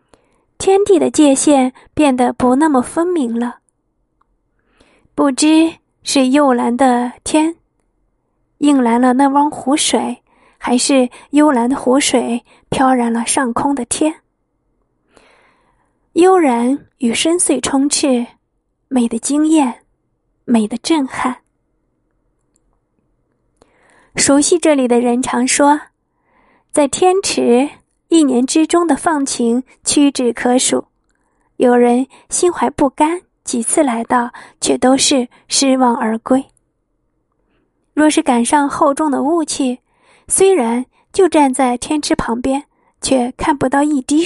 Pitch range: 250-315 Hz